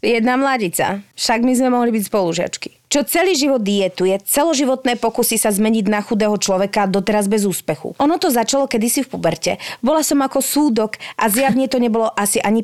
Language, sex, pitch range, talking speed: Slovak, female, 195-265 Hz, 180 wpm